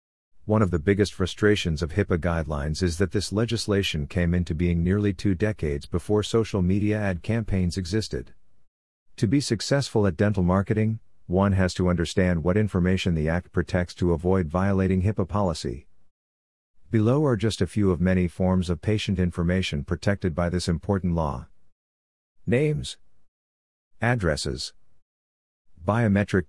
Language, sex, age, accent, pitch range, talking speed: English, male, 50-69, American, 75-105 Hz, 145 wpm